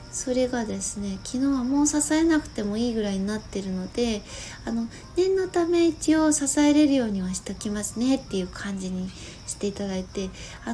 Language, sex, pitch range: Japanese, female, 180-270 Hz